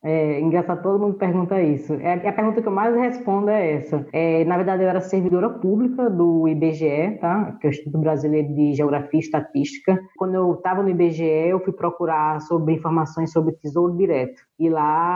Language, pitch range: Portuguese, 155-195 Hz